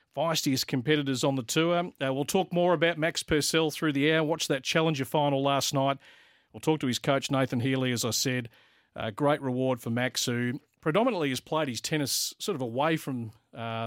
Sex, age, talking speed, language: male, 40-59, 205 wpm, English